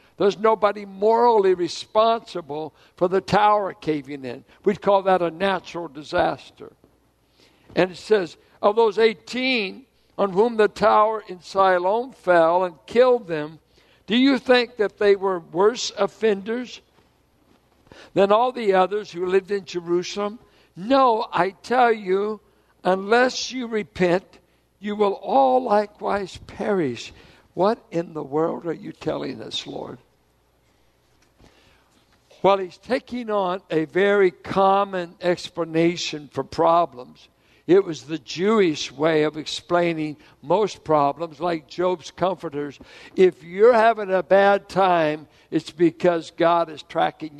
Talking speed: 130 wpm